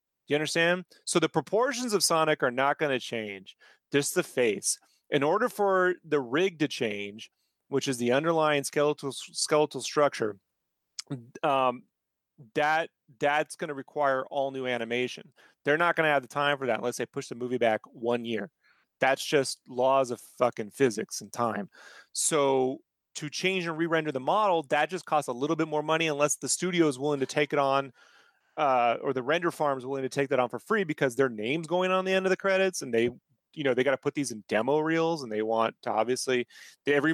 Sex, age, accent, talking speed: male, 30-49, American, 210 wpm